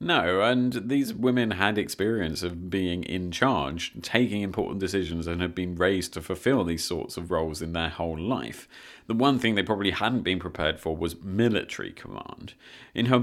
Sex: male